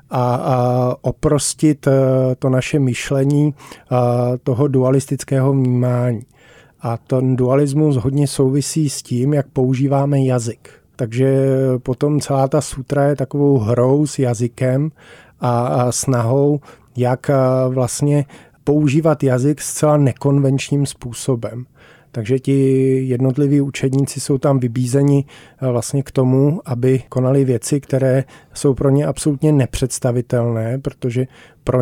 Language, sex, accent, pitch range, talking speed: Czech, male, native, 125-145 Hz, 105 wpm